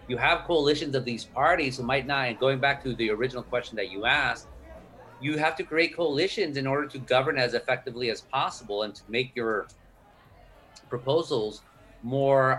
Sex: male